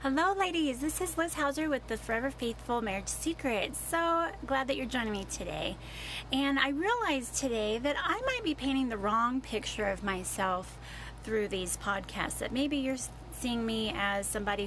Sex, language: female, English